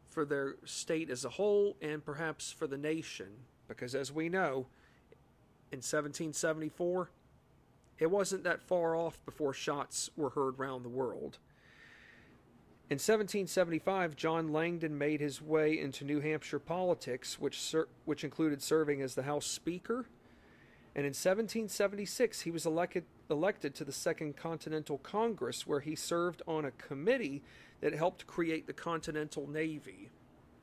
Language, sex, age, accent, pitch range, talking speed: English, male, 40-59, American, 145-175 Hz, 140 wpm